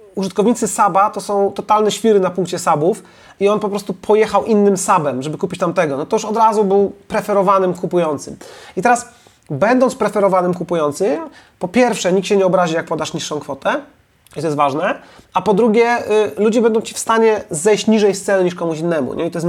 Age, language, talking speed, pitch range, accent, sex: 30-49, Polish, 205 wpm, 155-205 Hz, native, male